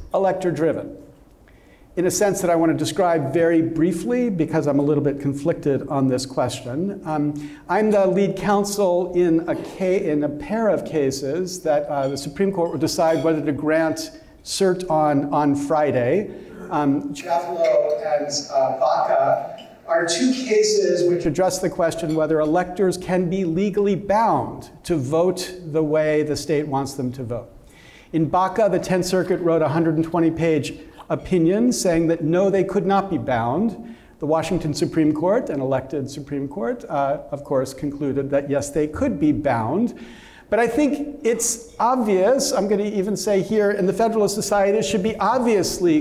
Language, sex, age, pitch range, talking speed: English, male, 50-69, 150-205 Hz, 165 wpm